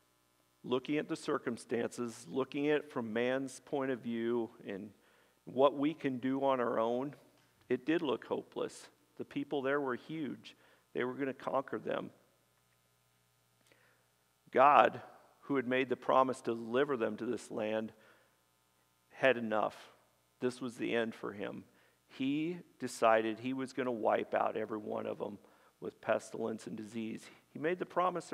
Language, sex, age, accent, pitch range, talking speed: English, male, 50-69, American, 105-130 Hz, 160 wpm